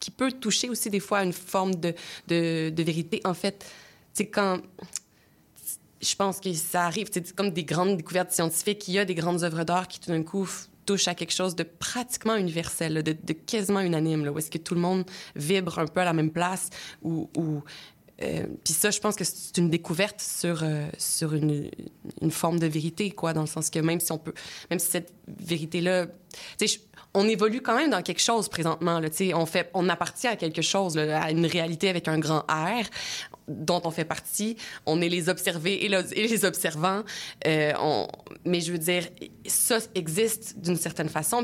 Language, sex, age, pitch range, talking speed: French, female, 20-39, 165-195 Hz, 210 wpm